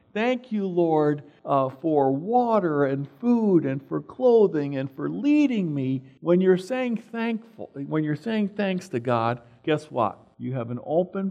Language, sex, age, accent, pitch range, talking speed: English, male, 50-69, American, 125-195 Hz, 165 wpm